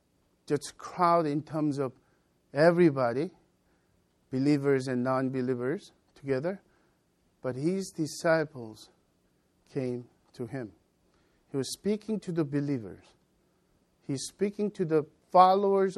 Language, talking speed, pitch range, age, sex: English, 100 wpm, 130-165 Hz, 50-69, male